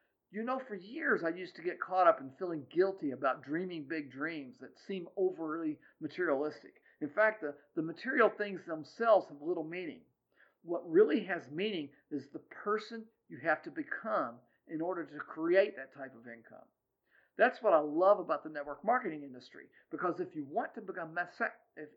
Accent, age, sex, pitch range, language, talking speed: American, 50-69, male, 150-225 Hz, English, 170 wpm